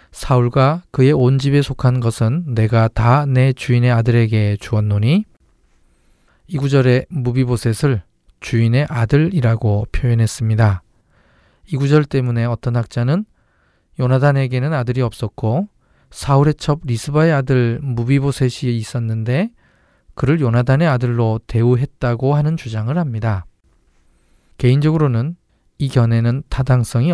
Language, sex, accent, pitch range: Korean, male, native, 115-140 Hz